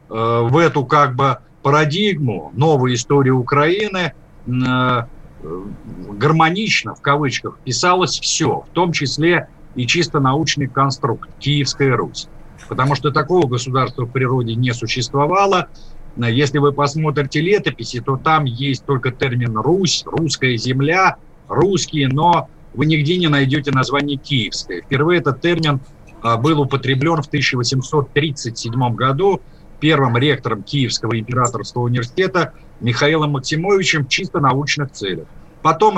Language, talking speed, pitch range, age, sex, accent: Russian, 120 wpm, 130-160 Hz, 50-69, male, native